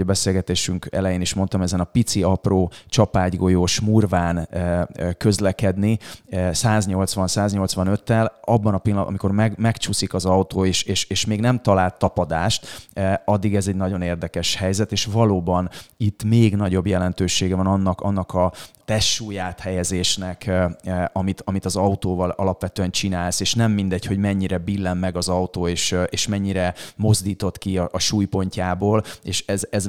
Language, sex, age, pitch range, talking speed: Hungarian, male, 30-49, 90-100 Hz, 140 wpm